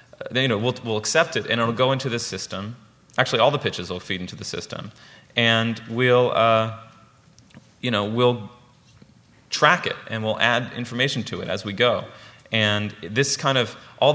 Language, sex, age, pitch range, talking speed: English, male, 30-49, 105-130 Hz, 180 wpm